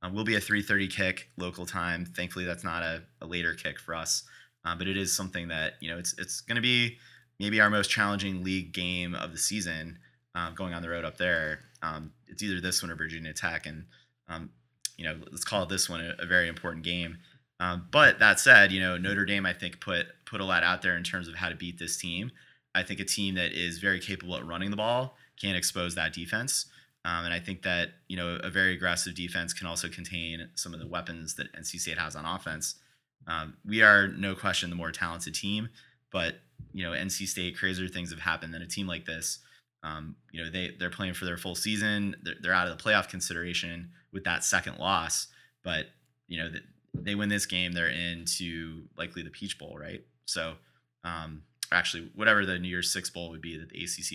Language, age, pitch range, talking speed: English, 30-49, 85-95 Hz, 225 wpm